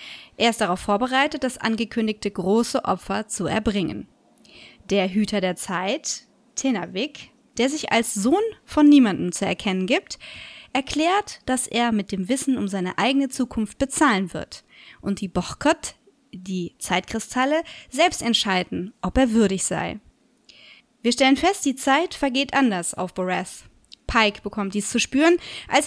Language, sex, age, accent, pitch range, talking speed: German, female, 20-39, German, 205-275 Hz, 145 wpm